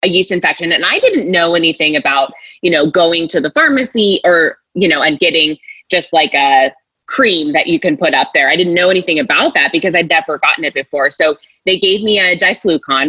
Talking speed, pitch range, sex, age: 220 wpm, 160-215 Hz, female, 20-39